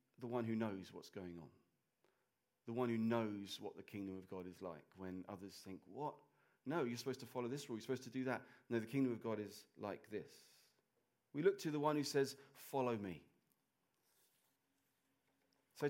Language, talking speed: English, 195 wpm